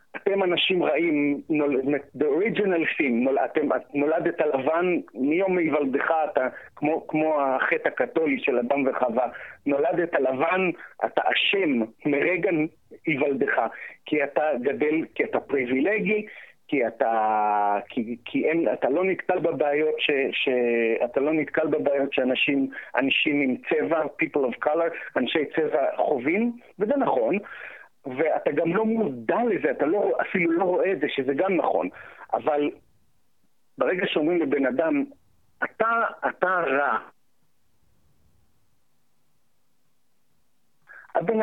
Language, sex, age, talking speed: Hebrew, male, 50-69, 115 wpm